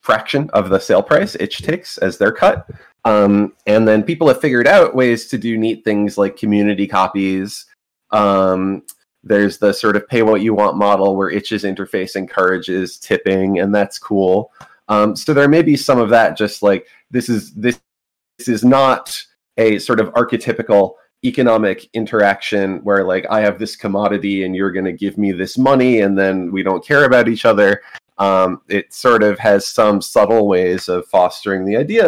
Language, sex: English, male